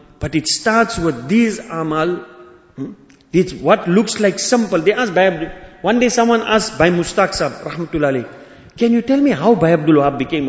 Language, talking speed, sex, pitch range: English, 190 wpm, male, 150-225 Hz